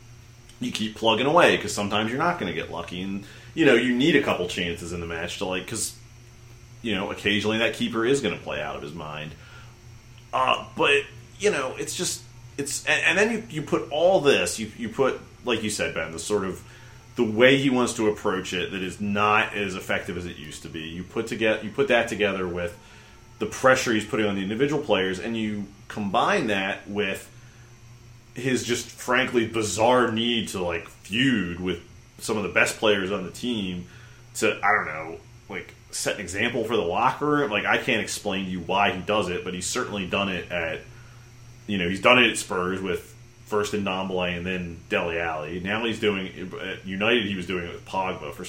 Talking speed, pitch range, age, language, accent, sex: 215 wpm, 95-120 Hz, 30-49, English, American, male